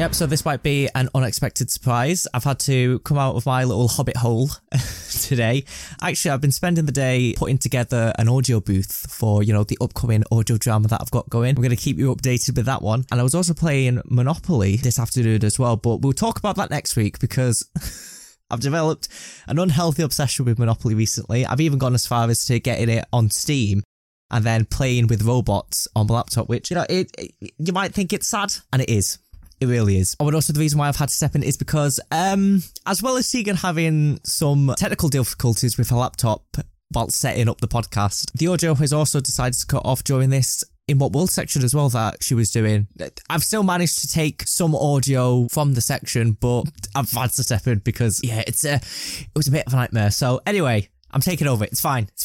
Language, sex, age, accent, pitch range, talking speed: English, male, 10-29, British, 115-150 Hz, 225 wpm